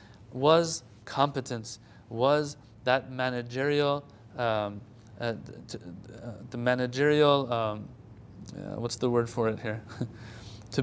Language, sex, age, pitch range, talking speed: English, male, 30-49, 110-150 Hz, 100 wpm